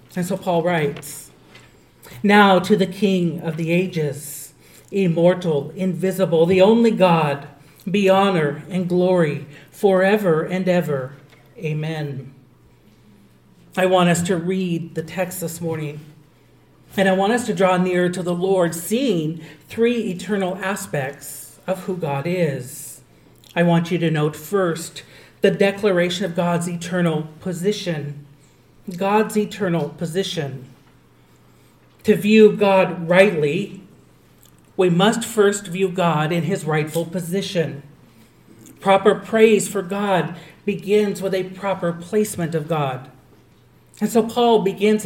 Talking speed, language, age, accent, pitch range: 125 wpm, English, 40-59, American, 155-195 Hz